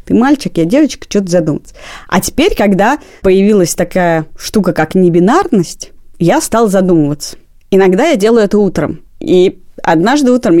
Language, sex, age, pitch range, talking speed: Russian, female, 30-49, 170-215 Hz, 140 wpm